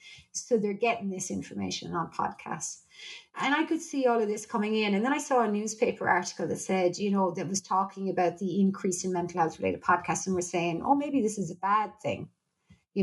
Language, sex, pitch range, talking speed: English, female, 180-220 Hz, 230 wpm